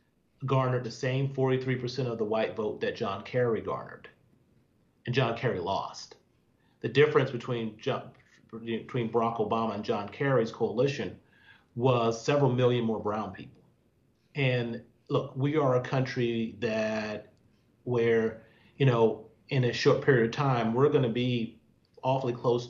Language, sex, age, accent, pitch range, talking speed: English, male, 40-59, American, 115-130 Hz, 145 wpm